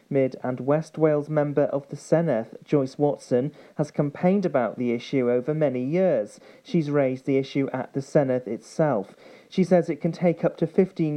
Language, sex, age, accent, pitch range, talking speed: English, male, 40-59, British, 130-160 Hz, 185 wpm